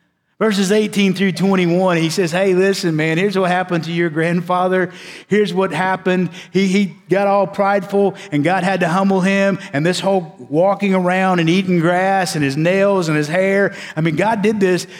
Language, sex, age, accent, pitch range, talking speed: English, male, 50-69, American, 140-190 Hz, 190 wpm